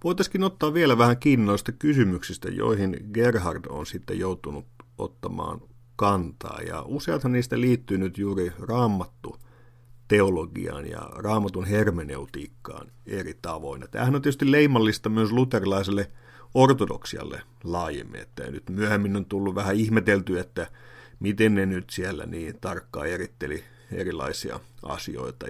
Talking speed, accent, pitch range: 120 wpm, native, 95-120 Hz